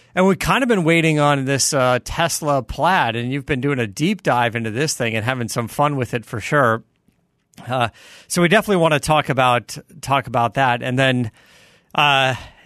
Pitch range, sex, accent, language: 115-145 Hz, male, American, English